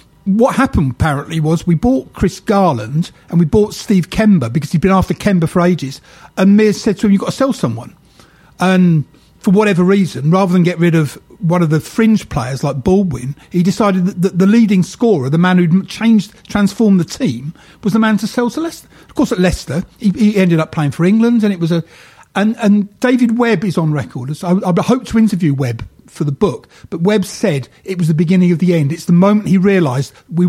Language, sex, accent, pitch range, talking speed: English, male, British, 160-205 Hz, 225 wpm